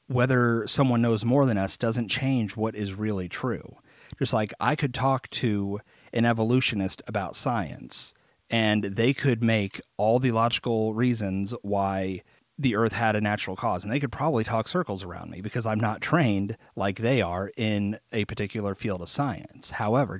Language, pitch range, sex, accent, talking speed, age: English, 105-125 Hz, male, American, 175 wpm, 30-49